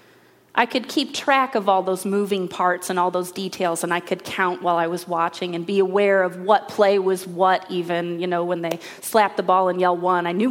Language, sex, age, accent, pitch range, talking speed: English, female, 30-49, American, 175-225 Hz, 240 wpm